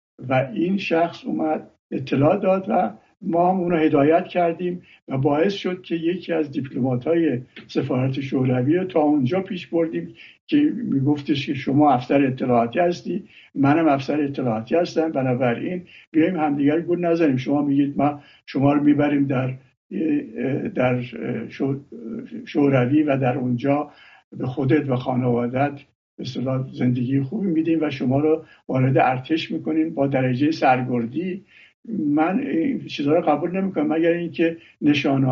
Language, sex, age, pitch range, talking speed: English, male, 60-79, 130-170 Hz, 135 wpm